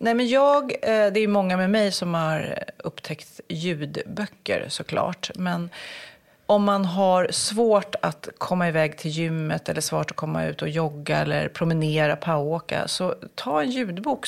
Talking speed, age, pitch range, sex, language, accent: 160 wpm, 30-49, 160-215 Hz, female, English, Swedish